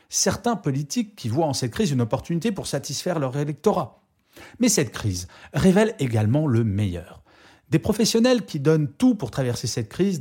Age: 30-49